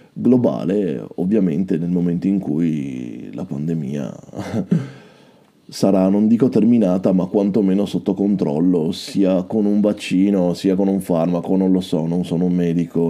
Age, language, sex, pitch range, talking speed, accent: 20-39, Italian, male, 95-140 Hz, 140 wpm, native